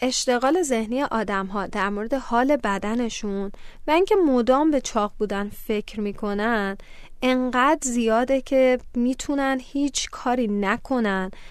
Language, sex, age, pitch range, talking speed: Persian, female, 10-29, 215-280 Hz, 120 wpm